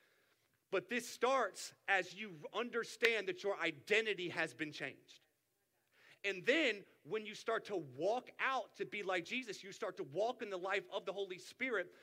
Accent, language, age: American, English, 40-59